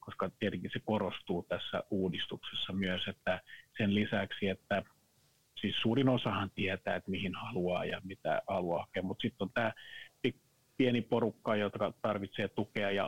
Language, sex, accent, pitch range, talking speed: Finnish, male, native, 95-115 Hz, 145 wpm